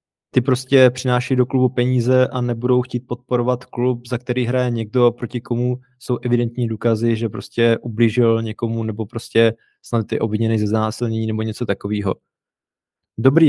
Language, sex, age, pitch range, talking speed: Czech, male, 20-39, 115-125 Hz, 155 wpm